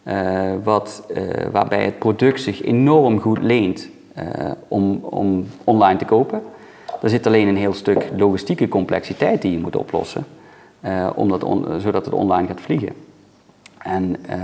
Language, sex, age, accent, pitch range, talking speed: Dutch, male, 40-59, Dutch, 95-105 Hz, 160 wpm